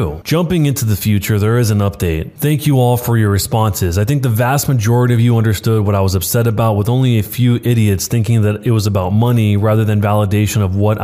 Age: 20-39